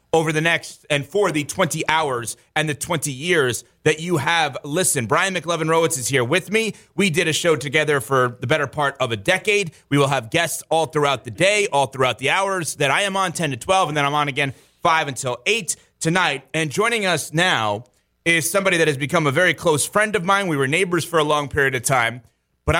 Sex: male